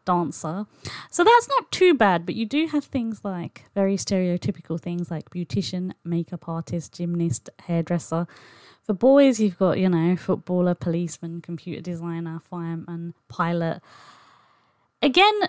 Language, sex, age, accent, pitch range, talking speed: English, female, 20-39, British, 165-205 Hz, 130 wpm